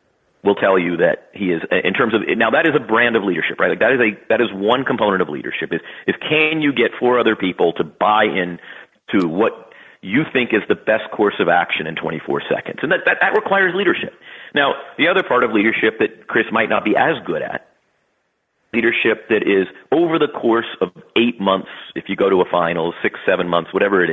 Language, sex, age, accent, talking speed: English, male, 40-59, American, 230 wpm